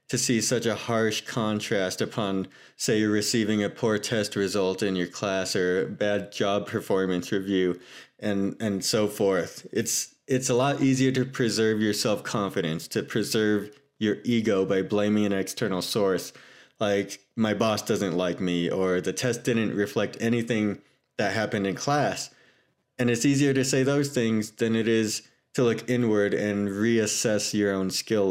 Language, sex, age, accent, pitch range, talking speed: English, male, 20-39, American, 100-125 Hz, 165 wpm